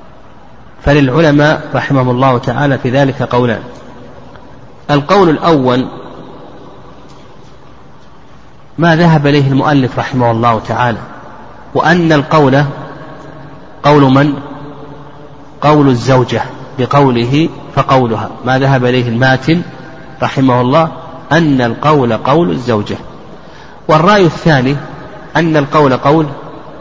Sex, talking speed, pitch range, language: male, 85 wpm, 130-160 Hz, Arabic